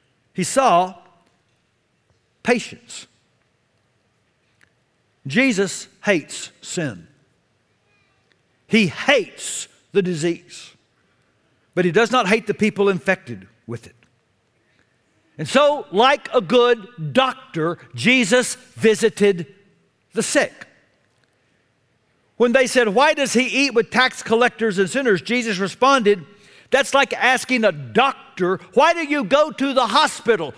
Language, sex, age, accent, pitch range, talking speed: English, male, 60-79, American, 180-255 Hz, 110 wpm